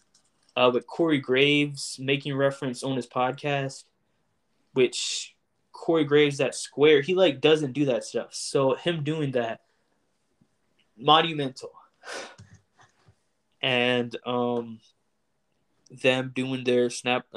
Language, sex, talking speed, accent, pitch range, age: English, male, 105 wpm, American, 130-150 Hz, 20-39